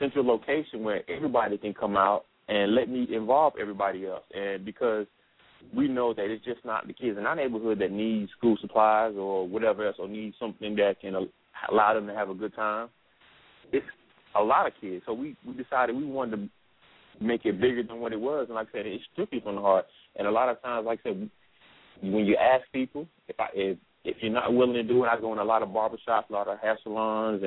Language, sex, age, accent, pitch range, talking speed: English, male, 30-49, American, 105-130 Hz, 235 wpm